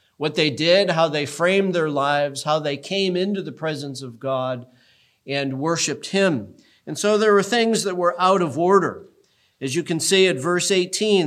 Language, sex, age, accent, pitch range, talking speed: English, male, 40-59, American, 150-185 Hz, 190 wpm